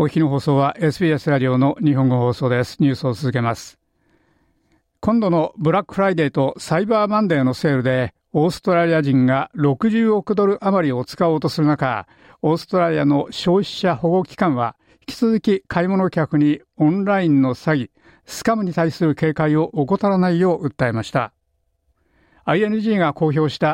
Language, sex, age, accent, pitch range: Japanese, male, 60-79, native, 140-190 Hz